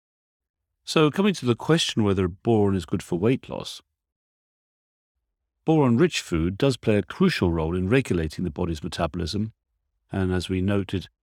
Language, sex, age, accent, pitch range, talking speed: English, male, 50-69, British, 80-115 Hz, 150 wpm